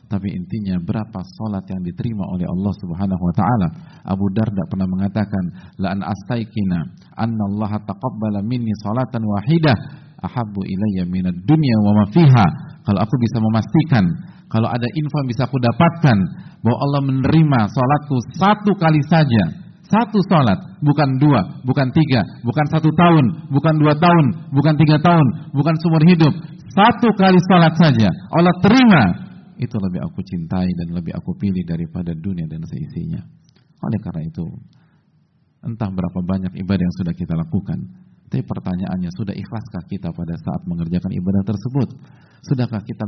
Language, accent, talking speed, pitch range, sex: Indonesian, native, 150 wpm, 95-155 Hz, male